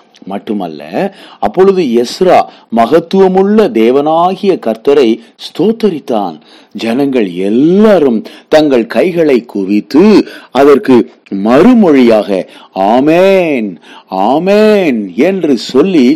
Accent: Indian